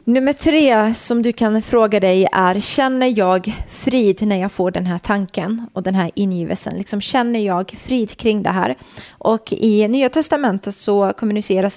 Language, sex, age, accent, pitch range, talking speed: Swedish, female, 30-49, native, 190-225 Hz, 175 wpm